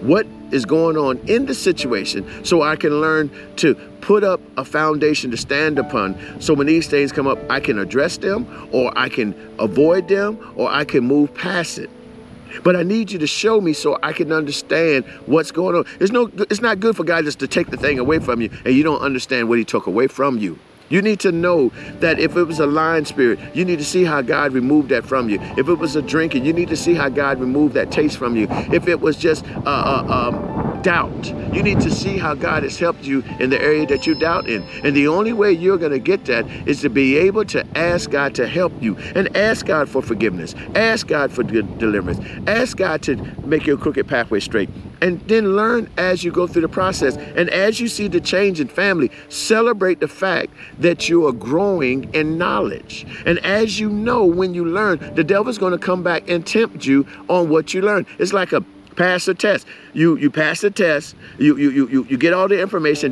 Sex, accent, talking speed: male, American, 230 wpm